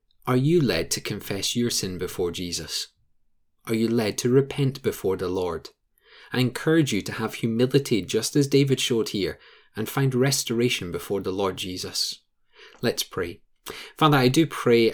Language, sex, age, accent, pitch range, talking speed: English, male, 30-49, British, 105-130 Hz, 165 wpm